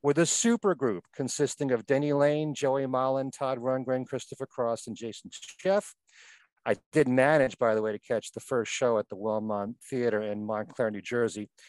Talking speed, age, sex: 185 wpm, 50-69, male